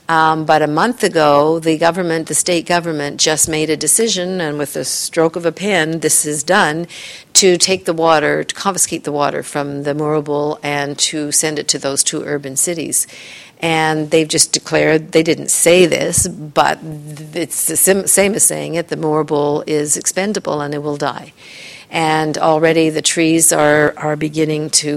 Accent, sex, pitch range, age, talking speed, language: American, female, 150-185 Hz, 50-69, 180 wpm, English